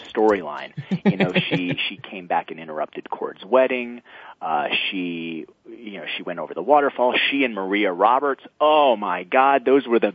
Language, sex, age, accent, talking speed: English, male, 30-49, American, 175 wpm